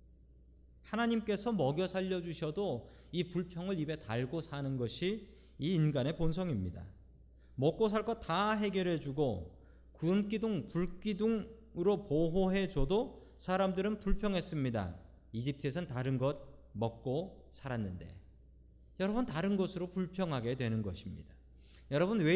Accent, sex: native, male